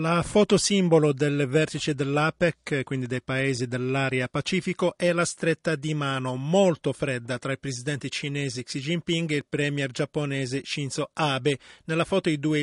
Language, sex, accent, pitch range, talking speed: Italian, male, native, 130-155 Hz, 160 wpm